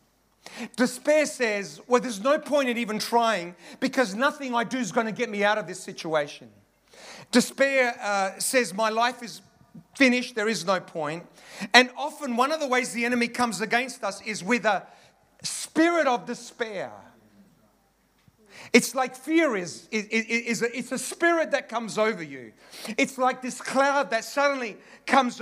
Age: 40-59